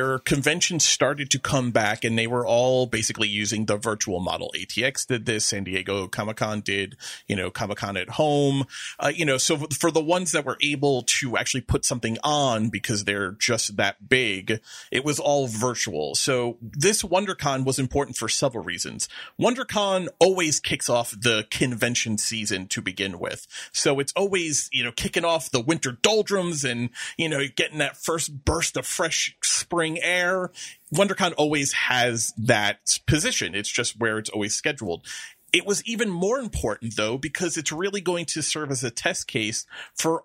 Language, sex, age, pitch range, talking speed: English, male, 30-49, 110-155 Hz, 175 wpm